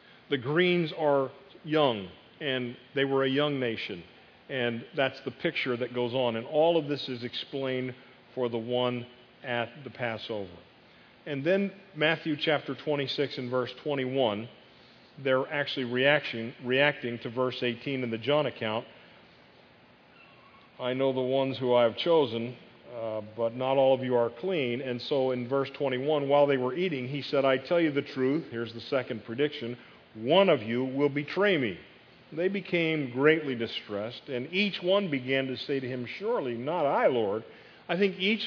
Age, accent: 40-59, American